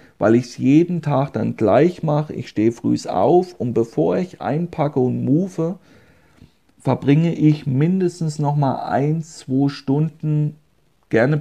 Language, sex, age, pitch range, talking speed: German, male, 40-59, 125-150 Hz, 135 wpm